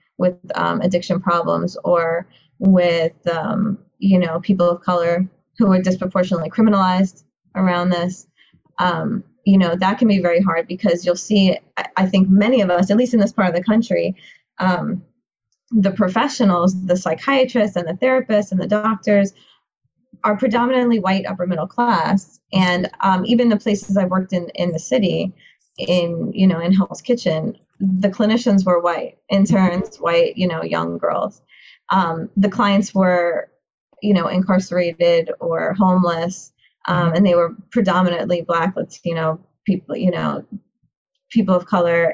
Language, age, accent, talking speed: English, 20-39, American, 155 wpm